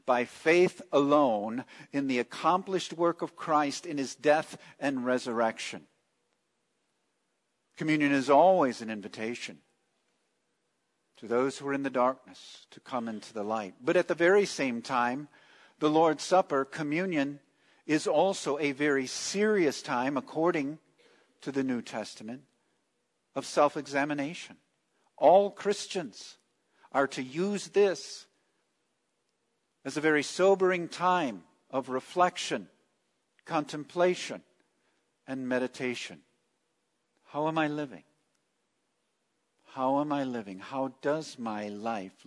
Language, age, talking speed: English, 50-69, 115 wpm